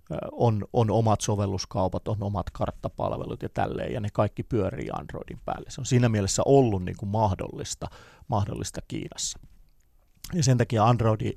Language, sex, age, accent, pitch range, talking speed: Finnish, male, 30-49, native, 105-125 Hz, 155 wpm